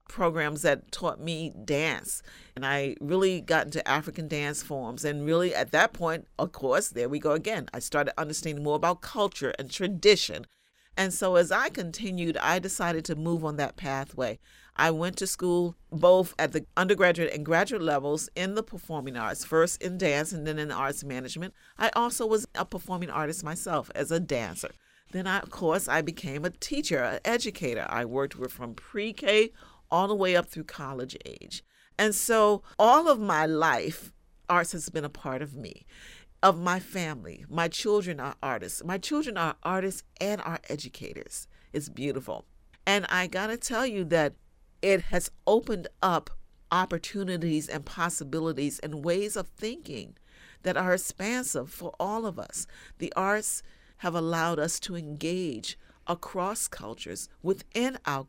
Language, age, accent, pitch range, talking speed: English, 40-59, American, 150-190 Hz, 165 wpm